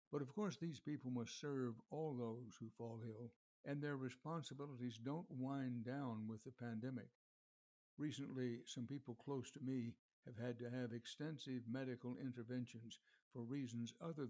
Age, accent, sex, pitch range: 60-79, American, male, 120-140 Hz